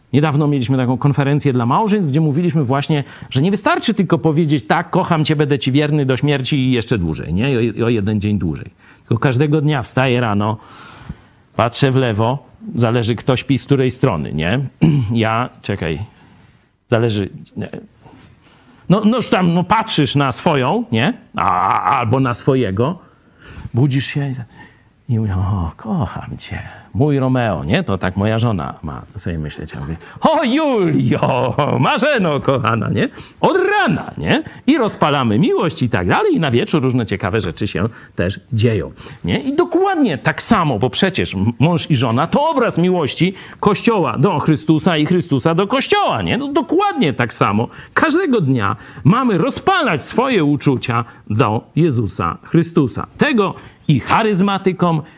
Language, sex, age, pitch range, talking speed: Polish, male, 50-69, 115-170 Hz, 155 wpm